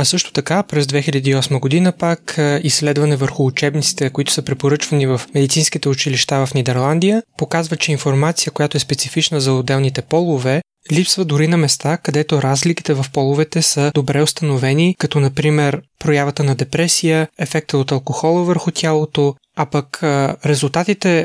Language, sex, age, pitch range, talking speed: Bulgarian, male, 20-39, 145-165 Hz, 145 wpm